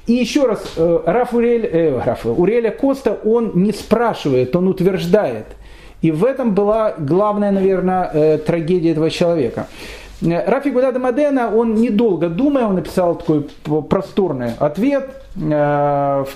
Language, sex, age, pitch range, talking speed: Russian, male, 40-59, 160-225 Hz, 130 wpm